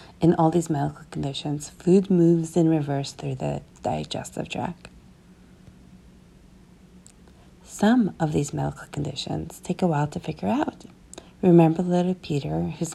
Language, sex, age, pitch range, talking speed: English, female, 40-59, 150-190 Hz, 130 wpm